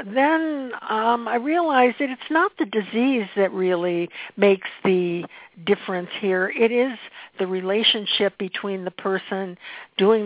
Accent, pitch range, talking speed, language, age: American, 180-225 Hz, 135 wpm, English, 60-79